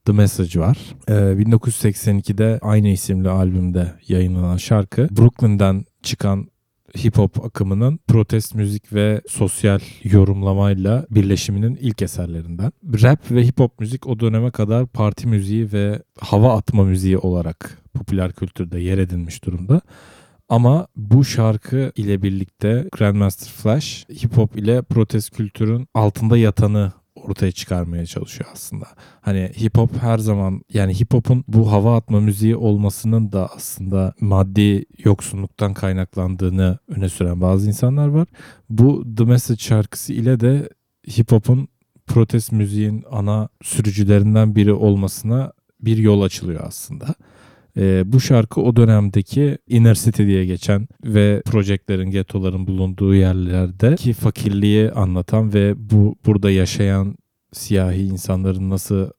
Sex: male